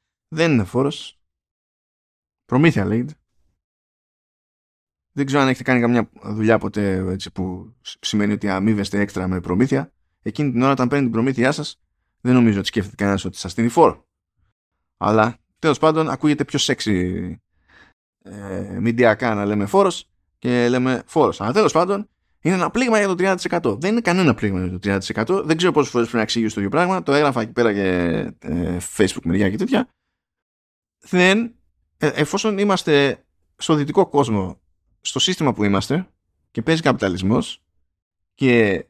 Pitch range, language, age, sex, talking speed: 95-160 Hz, Greek, 20-39, male, 155 wpm